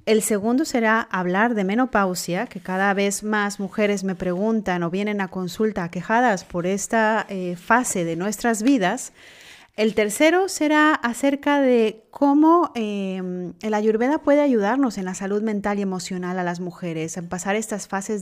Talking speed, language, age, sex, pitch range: 160 wpm, Spanish, 30-49, female, 185-225 Hz